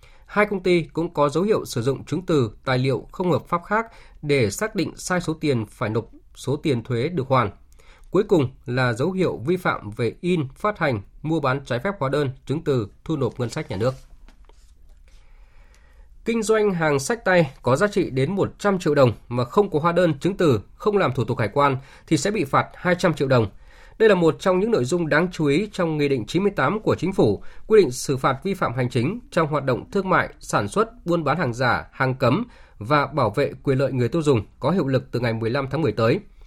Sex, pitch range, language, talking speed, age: male, 125-175 Hz, Vietnamese, 235 wpm, 20-39